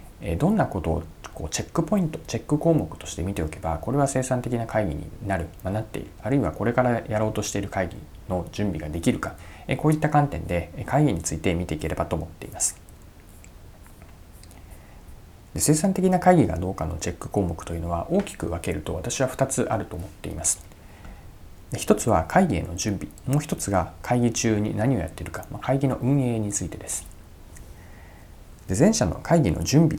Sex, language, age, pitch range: male, Japanese, 40-59, 85-115 Hz